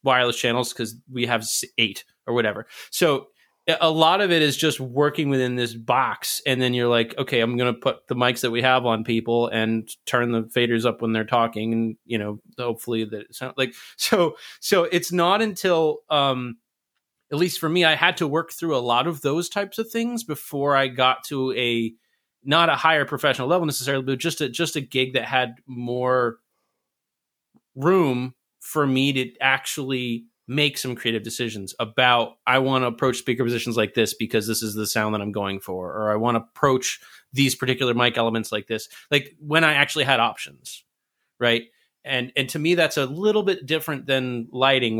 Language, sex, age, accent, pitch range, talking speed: English, male, 30-49, American, 115-145 Hz, 195 wpm